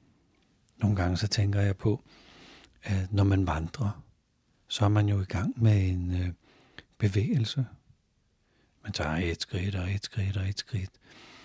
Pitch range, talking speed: 95-115 Hz, 150 wpm